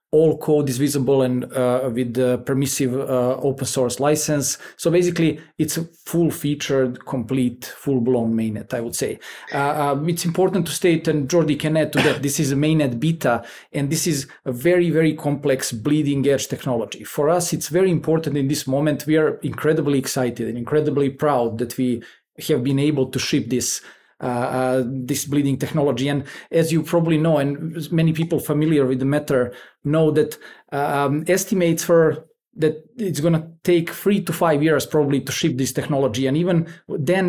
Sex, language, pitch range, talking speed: male, English, 135-160 Hz, 180 wpm